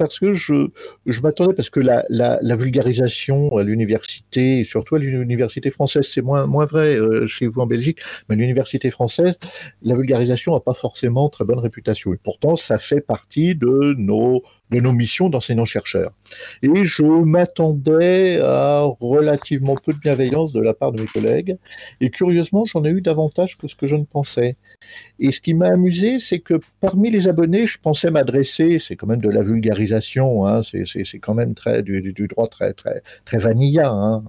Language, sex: French, male